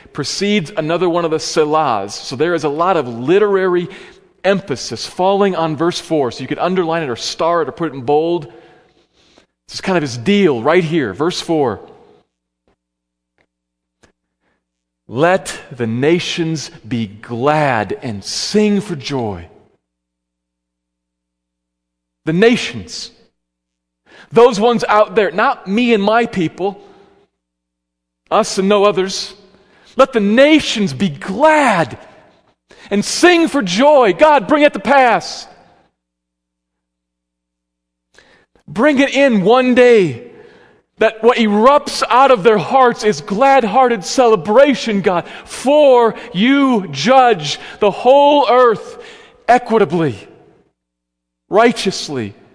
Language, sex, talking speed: English, male, 120 wpm